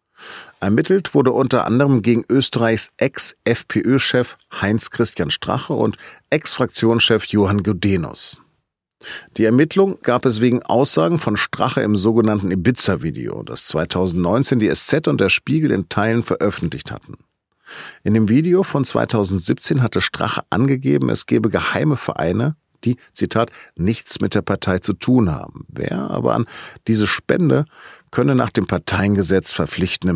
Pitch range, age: 90-120 Hz, 40-59